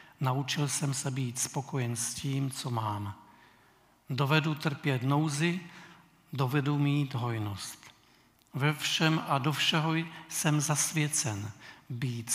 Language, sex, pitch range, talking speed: Czech, male, 125-155 Hz, 110 wpm